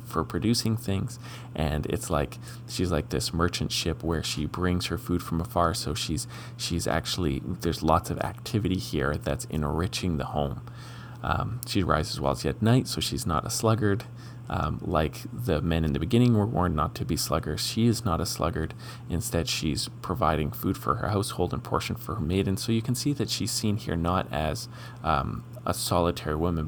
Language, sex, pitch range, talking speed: English, male, 90-120 Hz, 195 wpm